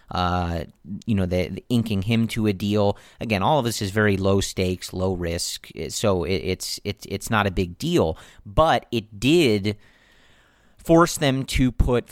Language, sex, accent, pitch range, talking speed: English, male, American, 95-115 Hz, 160 wpm